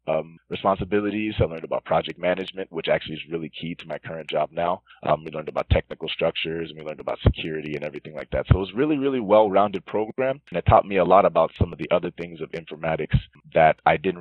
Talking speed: 235 wpm